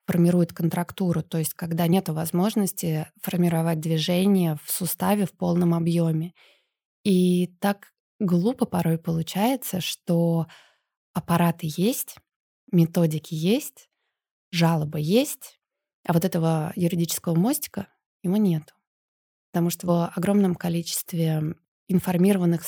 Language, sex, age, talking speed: Russian, female, 20-39, 105 wpm